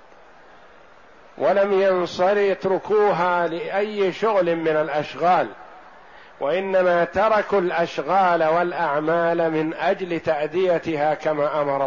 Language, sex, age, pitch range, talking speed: Arabic, male, 50-69, 165-195 Hz, 80 wpm